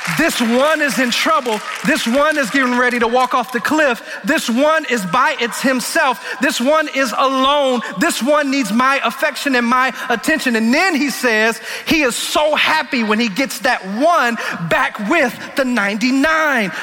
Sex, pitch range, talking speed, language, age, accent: male, 235-290 Hz, 175 wpm, English, 30-49, American